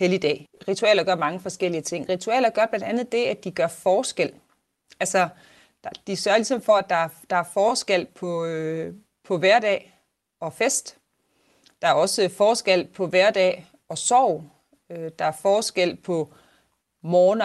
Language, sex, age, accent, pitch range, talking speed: Danish, female, 30-49, native, 170-220 Hz, 150 wpm